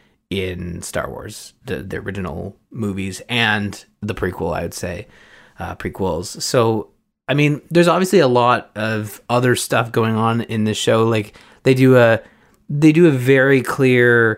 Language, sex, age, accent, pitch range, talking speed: English, male, 20-39, American, 100-120 Hz, 165 wpm